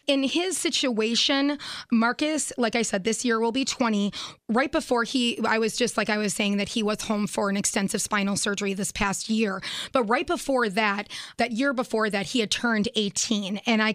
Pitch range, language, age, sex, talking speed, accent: 205-245 Hz, English, 20-39, female, 205 wpm, American